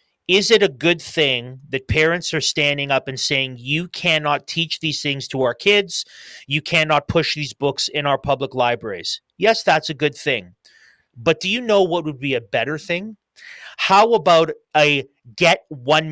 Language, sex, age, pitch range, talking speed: English, male, 30-49, 135-175 Hz, 180 wpm